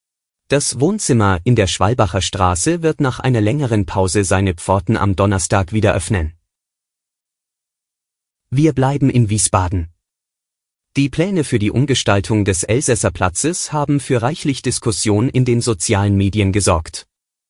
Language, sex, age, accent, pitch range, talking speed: German, male, 30-49, German, 100-135 Hz, 130 wpm